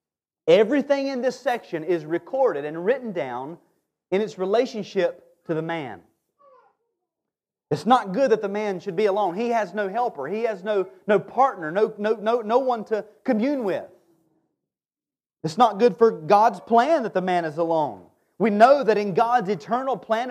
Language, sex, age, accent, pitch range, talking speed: English, male, 30-49, American, 180-250 Hz, 170 wpm